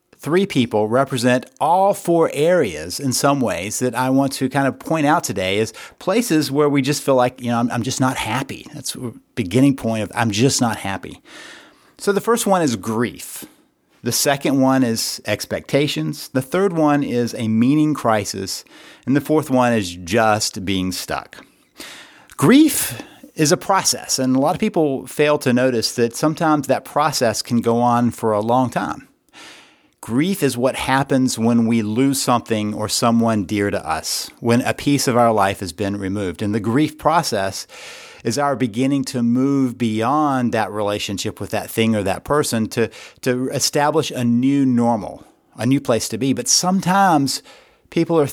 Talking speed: 180 wpm